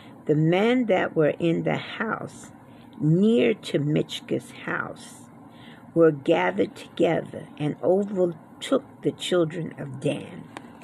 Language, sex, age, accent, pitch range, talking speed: English, female, 50-69, American, 155-195 Hz, 110 wpm